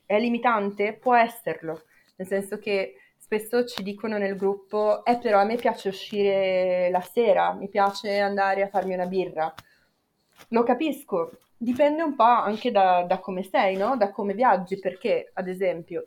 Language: Italian